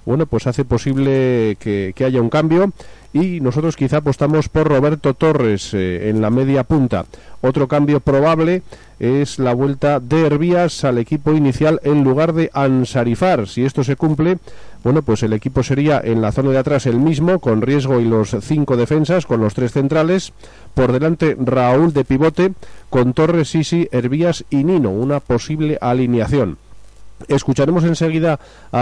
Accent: Spanish